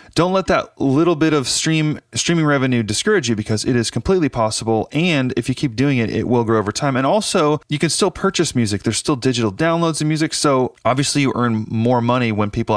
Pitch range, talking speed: 105-145 Hz, 225 wpm